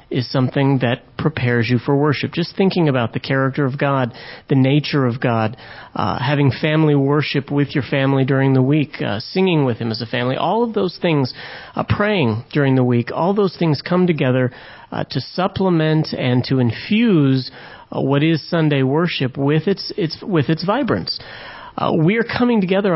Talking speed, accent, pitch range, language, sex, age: 185 wpm, American, 130-170 Hz, English, male, 40-59